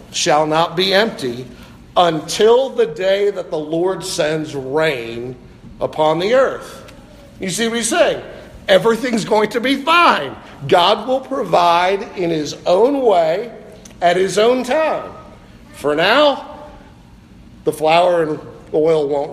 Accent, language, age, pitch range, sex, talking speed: American, English, 50-69, 155-240 Hz, male, 135 wpm